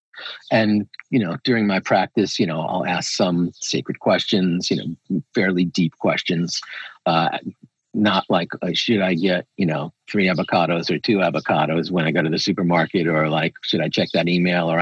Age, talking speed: 50-69, 185 wpm